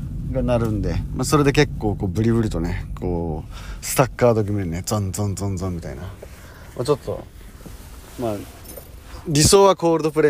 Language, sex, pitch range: Japanese, male, 100-155 Hz